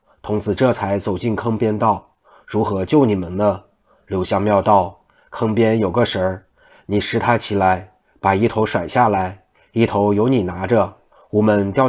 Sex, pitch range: male, 100-115 Hz